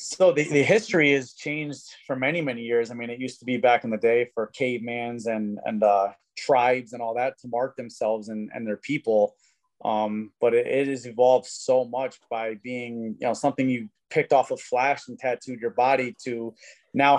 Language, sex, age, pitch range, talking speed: English, male, 30-49, 115-145 Hz, 215 wpm